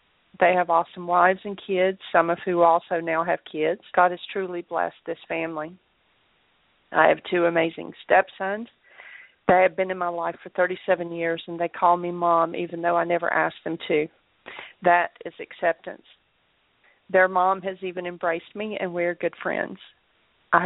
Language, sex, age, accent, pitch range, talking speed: English, female, 40-59, American, 170-190 Hz, 175 wpm